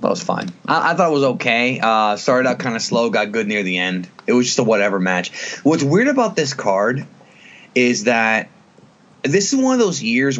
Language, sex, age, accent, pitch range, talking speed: English, male, 20-39, American, 115-160 Hz, 225 wpm